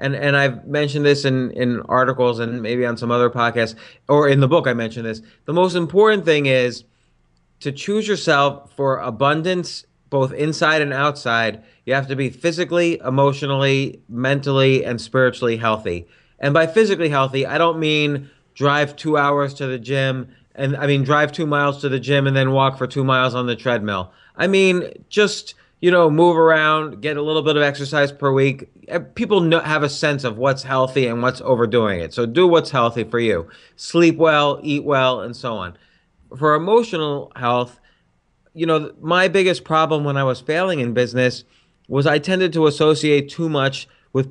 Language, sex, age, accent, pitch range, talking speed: English, male, 30-49, American, 125-155 Hz, 185 wpm